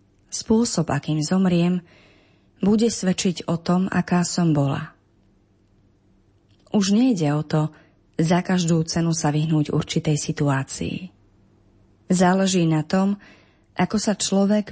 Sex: female